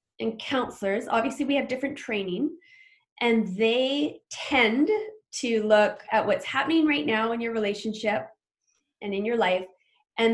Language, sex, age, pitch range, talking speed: English, female, 20-39, 190-270 Hz, 145 wpm